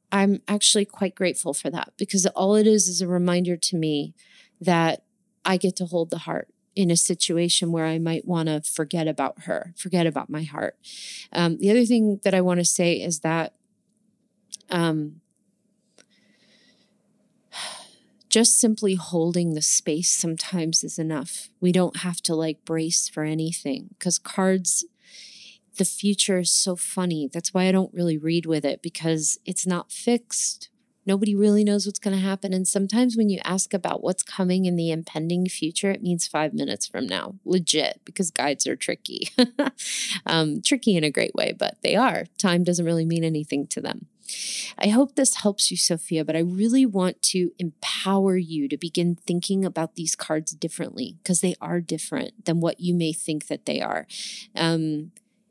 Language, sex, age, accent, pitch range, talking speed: English, female, 30-49, American, 165-210 Hz, 175 wpm